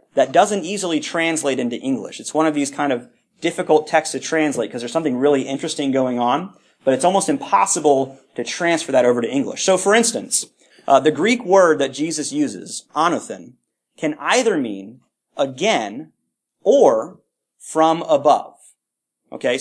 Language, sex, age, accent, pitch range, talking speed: English, male, 30-49, American, 145-195 Hz, 160 wpm